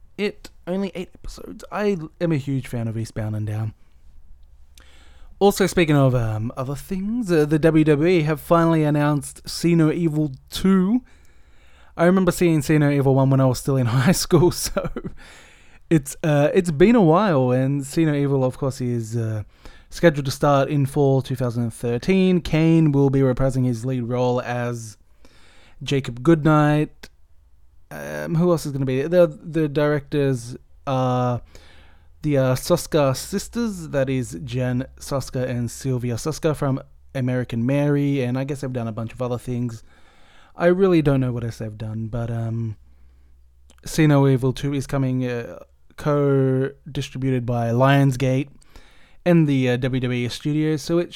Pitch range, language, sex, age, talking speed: 120-155 Hz, English, male, 20-39, 155 wpm